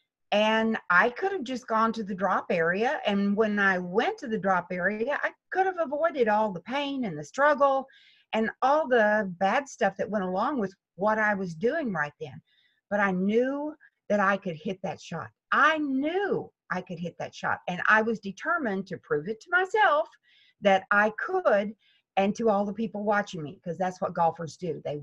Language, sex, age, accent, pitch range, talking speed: English, female, 50-69, American, 190-255 Hz, 200 wpm